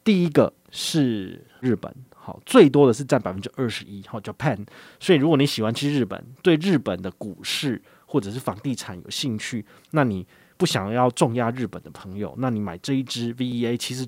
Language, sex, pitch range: Chinese, male, 110-140 Hz